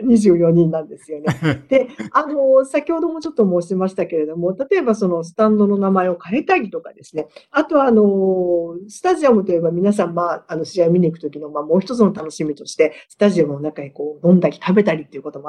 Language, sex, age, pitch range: Japanese, female, 50-69, 160-240 Hz